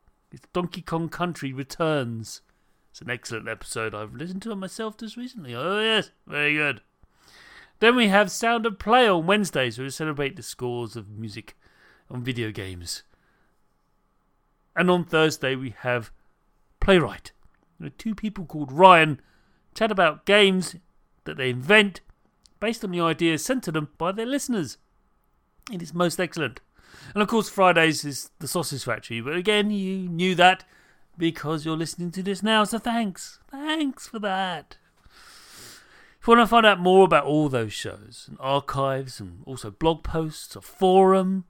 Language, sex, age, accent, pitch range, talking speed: English, male, 40-59, British, 140-215 Hz, 160 wpm